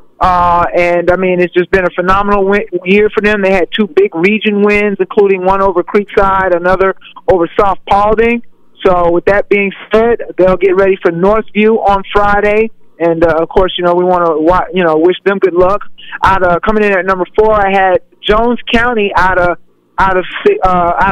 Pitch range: 175-210 Hz